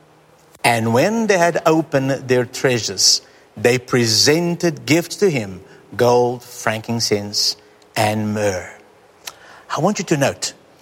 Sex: male